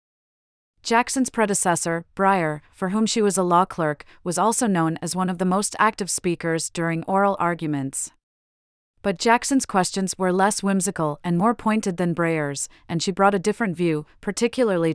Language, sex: English, female